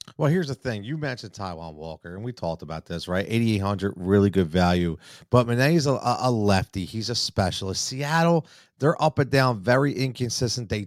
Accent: American